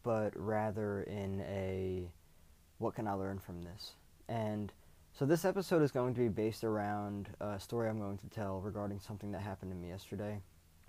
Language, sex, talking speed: English, male, 180 wpm